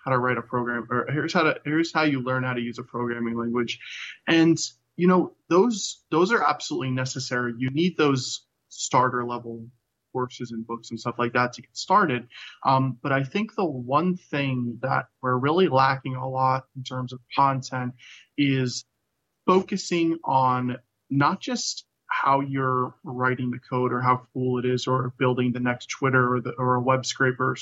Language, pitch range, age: English, 120-135 Hz, 20-39